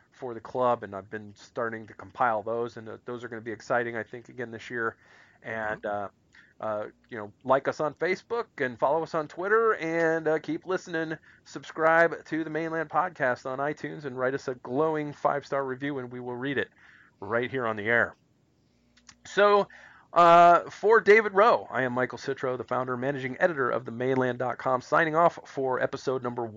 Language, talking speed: English, 195 wpm